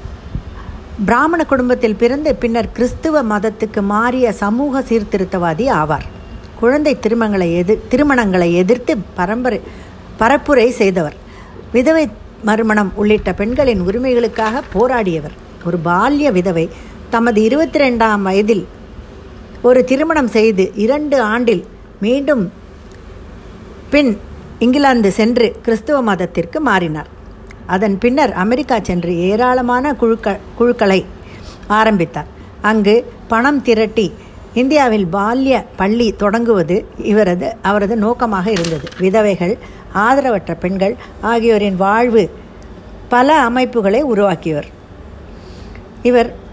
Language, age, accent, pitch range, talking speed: Tamil, 50-69, native, 195-245 Hz, 90 wpm